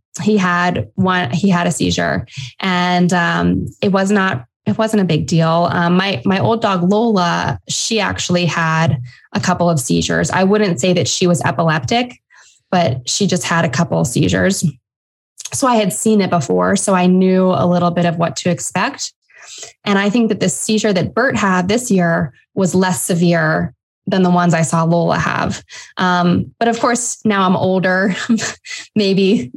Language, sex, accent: English, female, American